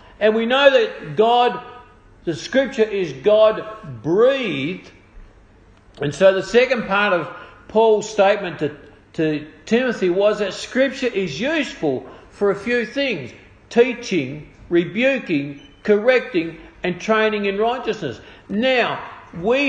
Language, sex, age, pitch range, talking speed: English, male, 50-69, 140-230 Hz, 115 wpm